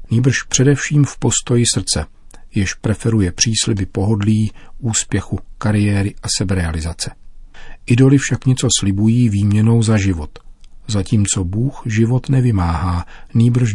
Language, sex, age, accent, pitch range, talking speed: Czech, male, 40-59, native, 95-115 Hz, 110 wpm